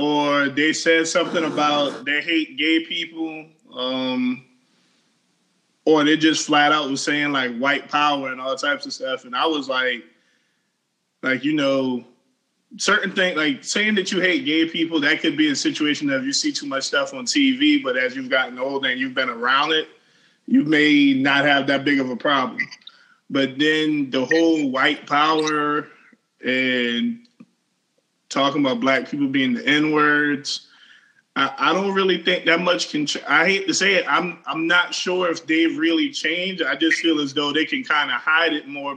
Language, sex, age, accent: English, male, 20-39, American